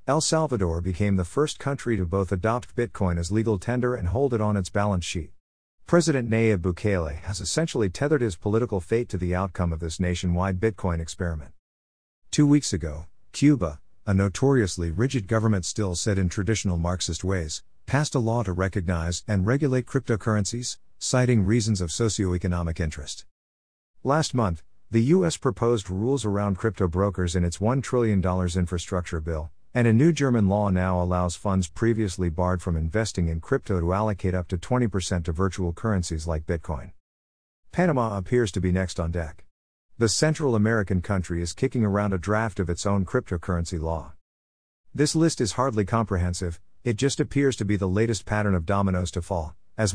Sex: male